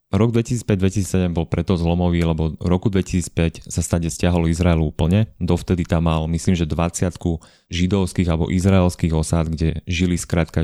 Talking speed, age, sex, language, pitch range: 145 wpm, 30-49, male, Slovak, 80-90 Hz